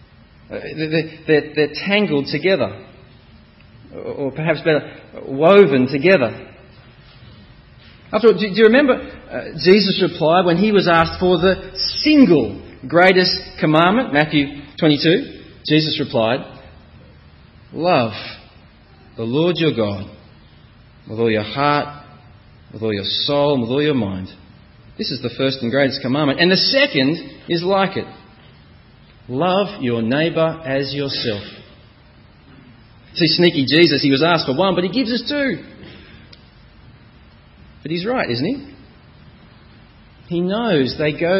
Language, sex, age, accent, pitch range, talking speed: English, male, 40-59, Australian, 135-190 Hz, 130 wpm